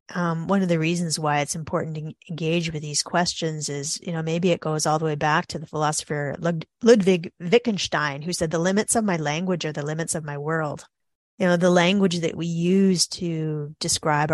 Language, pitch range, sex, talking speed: English, 150-180 Hz, female, 210 wpm